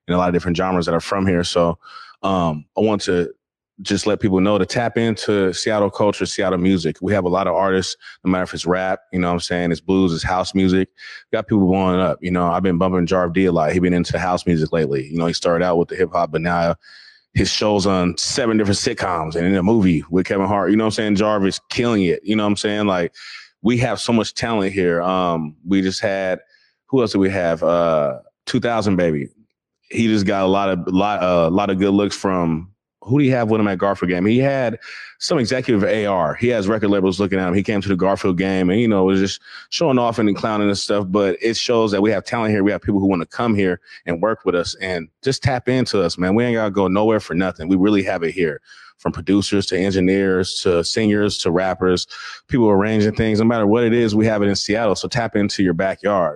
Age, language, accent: 20-39, English, American